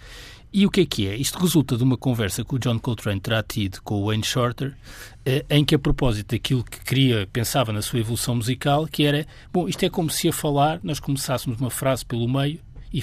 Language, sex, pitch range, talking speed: Portuguese, male, 125-175 Hz, 225 wpm